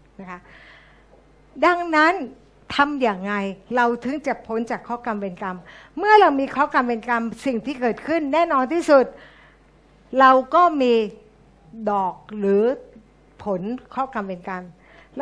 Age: 60-79